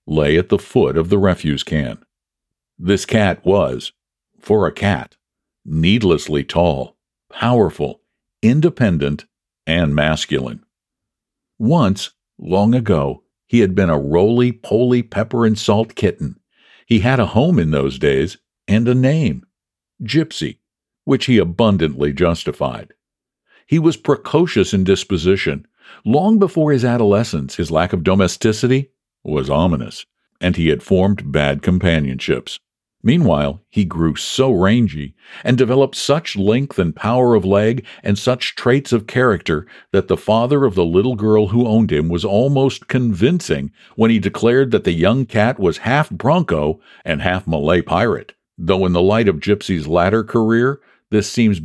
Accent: American